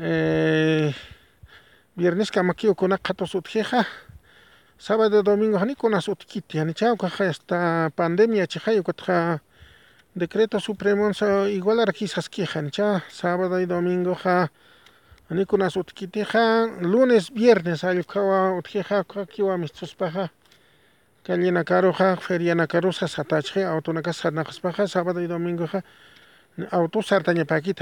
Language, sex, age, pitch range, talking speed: English, male, 40-59, 175-215 Hz, 115 wpm